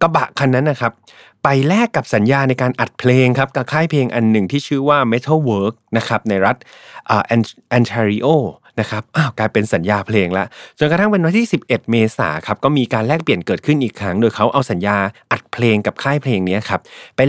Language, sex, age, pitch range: Thai, male, 30-49, 105-140 Hz